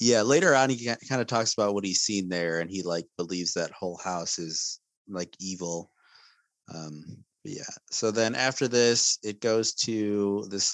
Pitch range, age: 90-105 Hz, 30-49